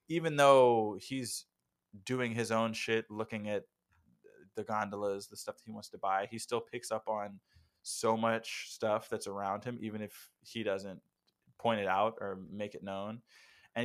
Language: English